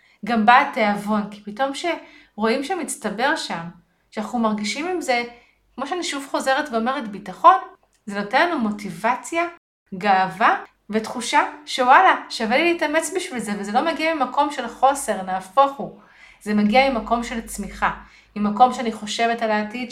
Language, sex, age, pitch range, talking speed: Hebrew, female, 30-49, 200-270 Hz, 145 wpm